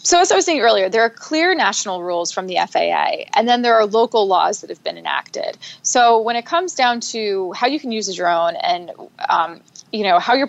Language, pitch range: English, 180-225 Hz